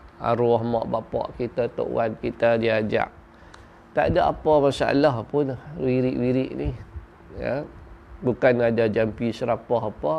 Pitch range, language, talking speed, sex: 105-130 Hz, Malay, 125 wpm, male